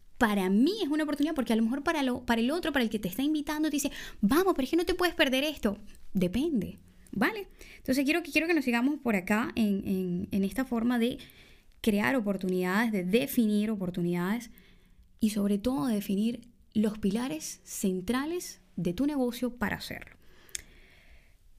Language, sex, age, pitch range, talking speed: Spanish, female, 10-29, 200-265 Hz, 180 wpm